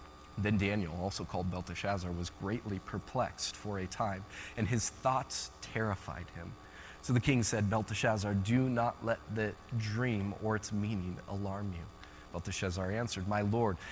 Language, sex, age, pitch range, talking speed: English, male, 20-39, 105-150 Hz, 150 wpm